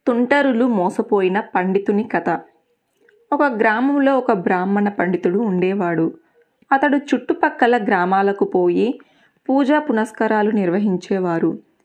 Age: 20-39